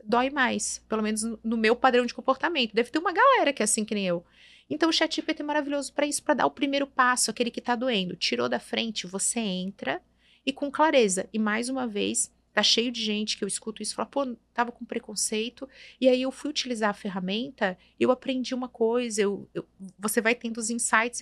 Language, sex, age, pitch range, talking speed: Portuguese, female, 30-49, 195-245 Hz, 225 wpm